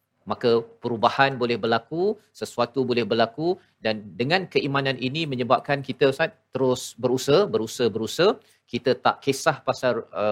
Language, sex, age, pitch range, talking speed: Malayalam, male, 40-59, 115-140 Hz, 135 wpm